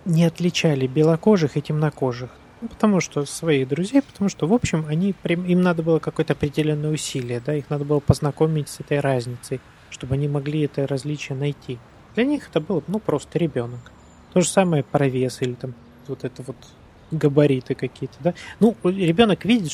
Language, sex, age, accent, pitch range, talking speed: Russian, male, 30-49, native, 135-165 Hz, 180 wpm